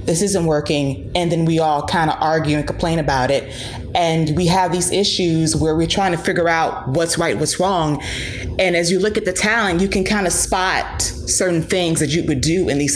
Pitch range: 160-195 Hz